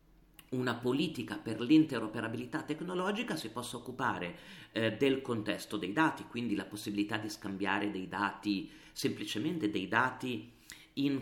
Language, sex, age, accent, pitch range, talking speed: Italian, male, 40-59, native, 110-155 Hz, 130 wpm